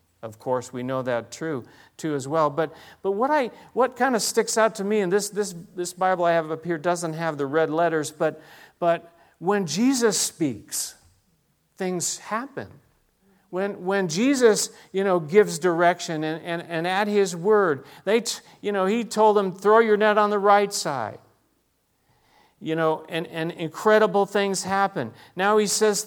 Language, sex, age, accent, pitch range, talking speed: English, male, 50-69, American, 170-215 Hz, 180 wpm